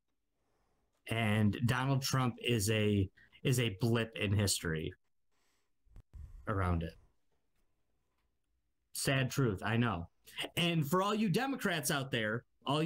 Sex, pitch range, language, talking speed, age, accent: male, 100-160 Hz, English, 110 wpm, 30-49, American